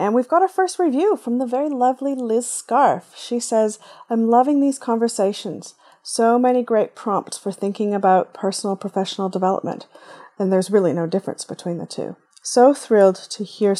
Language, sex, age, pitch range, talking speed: English, female, 30-49, 190-245 Hz, 175 wpm